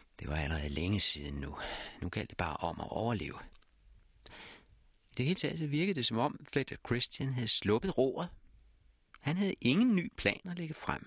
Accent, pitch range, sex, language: native, 85-145 Hz, male, Danish